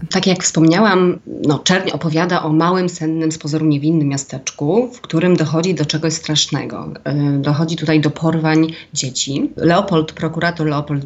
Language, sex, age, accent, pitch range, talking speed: Polish, female, 30-49, native, 145-160 Hz, 140 wpm